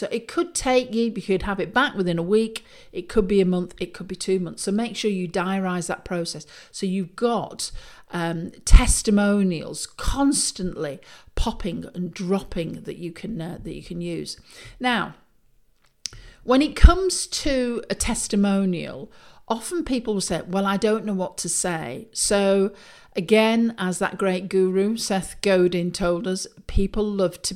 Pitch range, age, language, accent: 180-220 Hz, 50-69, English, British